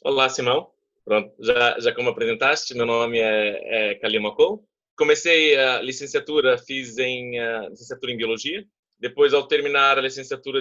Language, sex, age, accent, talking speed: English, male, 20-39, Brazilian, 145 wpm